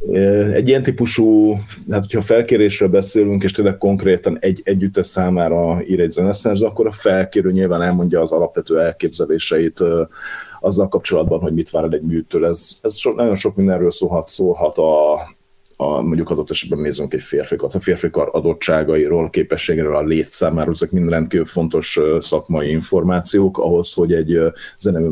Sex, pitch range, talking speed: male, 85-95 Hz, 155 wpm